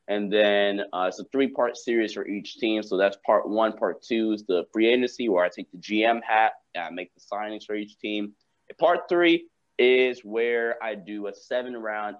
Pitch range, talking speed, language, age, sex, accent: 95-110 Hz, 205 wpm, English, 20-39, male, American